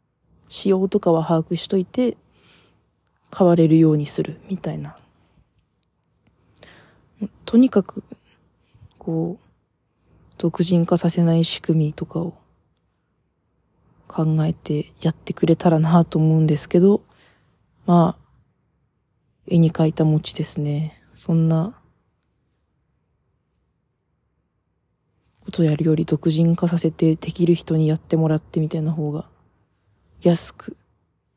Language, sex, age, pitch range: Japanese, female, 20-39, 155-190 Hz